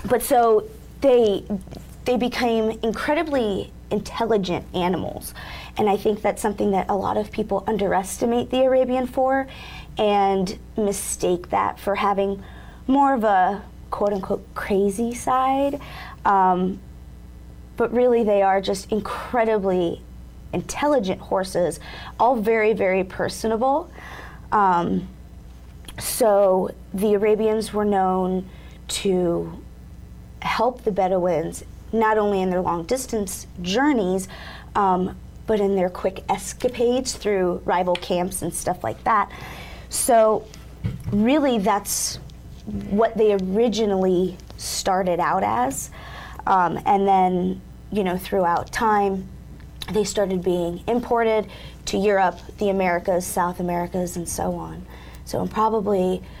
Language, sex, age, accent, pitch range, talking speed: English, female, 20-39, American, 180-225 Hz, 115 wpm